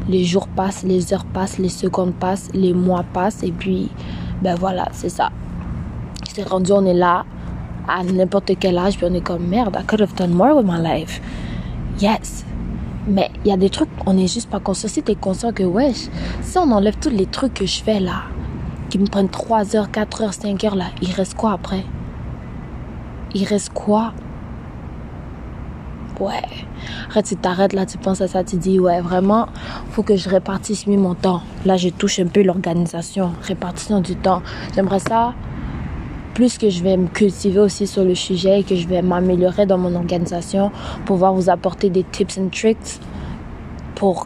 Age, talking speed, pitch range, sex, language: 20-39, 195 wpm, 180-200 Hz, female, French